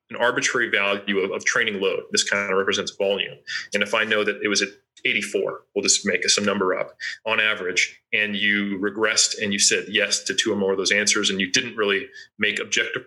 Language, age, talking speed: English, 30-49, 225 wpm